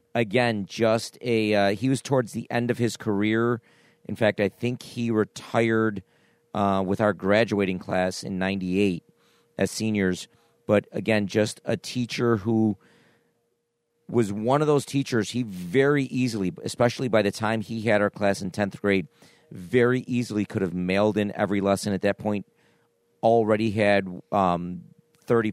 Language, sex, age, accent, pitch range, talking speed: English, male, 40-59, American, 100-115 Hz, 155 wpm